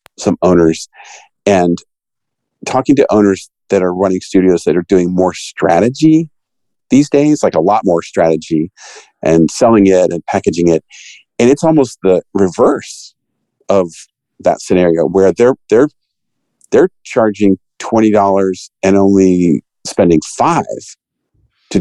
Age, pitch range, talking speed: 50-69, 90-120 Hz, 130 wpm